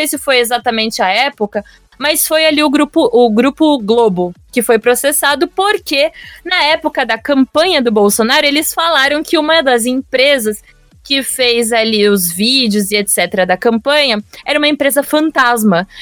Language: Portuguese